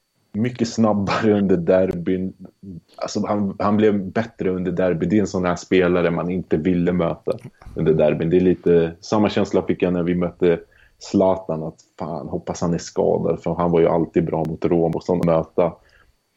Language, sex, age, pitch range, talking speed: Swedish, male, 30-49, 90-100 Hz, 185 wpm